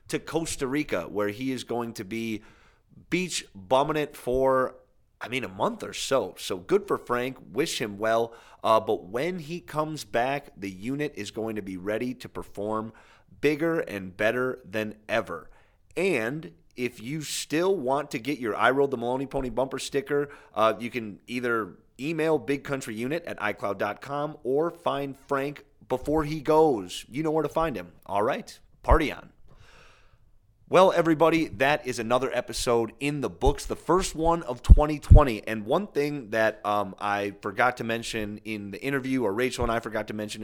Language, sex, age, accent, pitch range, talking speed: English, male, 30-49, American, 110-145 Hz, 175 wpm